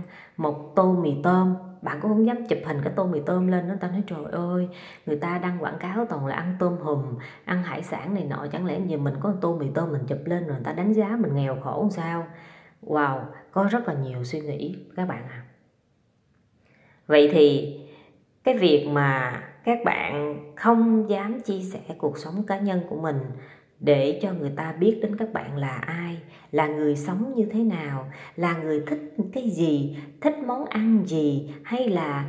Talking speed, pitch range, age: 205 wpm, 145-190 Hz, 20-39